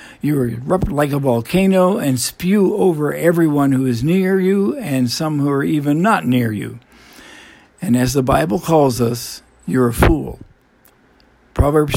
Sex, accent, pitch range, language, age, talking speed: male, American, 125-160 Hz, English, 60-79, 155 wpm